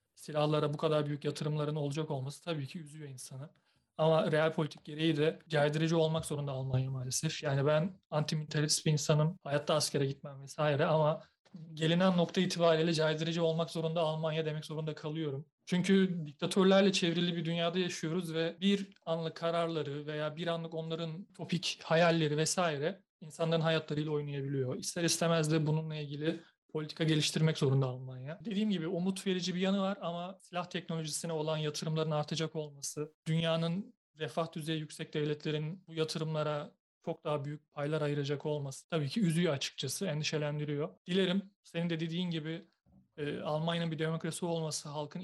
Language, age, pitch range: Turkish, 40-59, 150-170 Hz